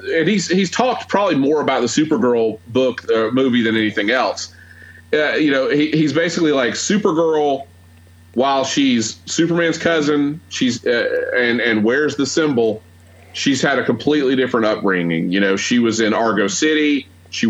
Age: 30-49